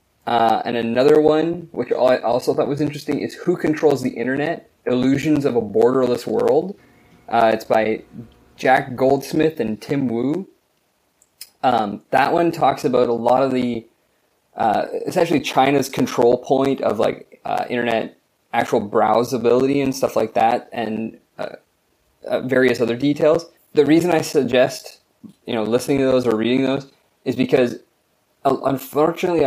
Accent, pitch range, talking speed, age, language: American, 120-150 Hz, 150 wpm, 20-39, English